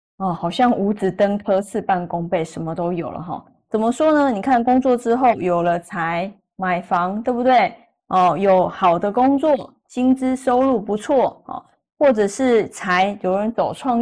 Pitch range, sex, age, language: 185-245 Hz, female, 20-39, Chinese